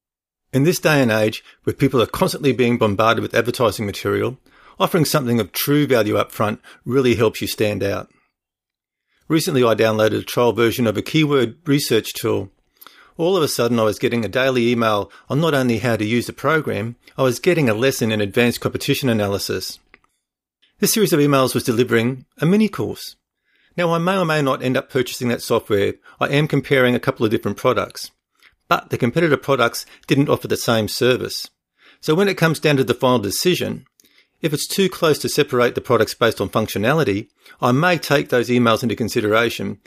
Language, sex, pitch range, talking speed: English, male, 115-145 Hz, 195 wpm